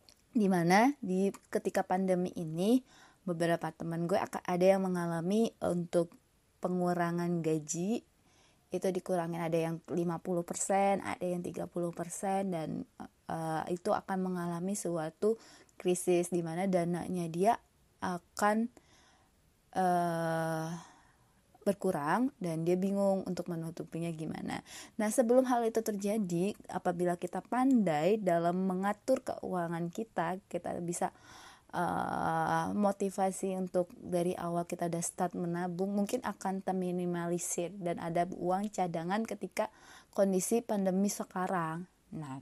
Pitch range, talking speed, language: 175-200 Hz, 110 wpm, English